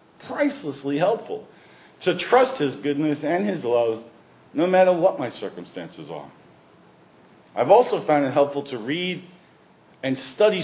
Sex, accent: male, American